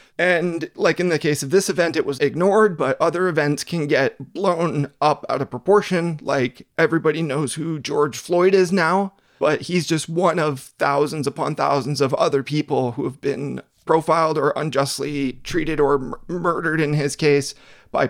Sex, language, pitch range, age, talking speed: male, English, 140-175 Hz, 30-49, 175 wpm